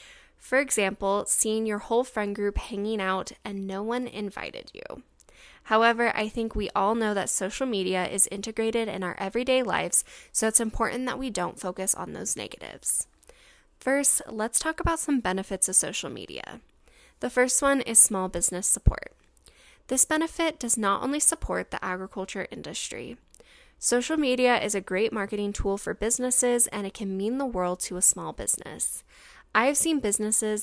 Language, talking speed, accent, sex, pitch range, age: English, 170 wpm, American, female, 195-250 Hz, 10-29